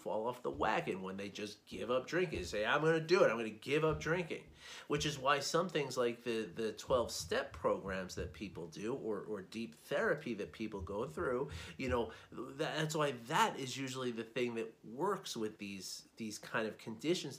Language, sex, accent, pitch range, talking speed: English, male, American, 115-155 Hz, 215 wpm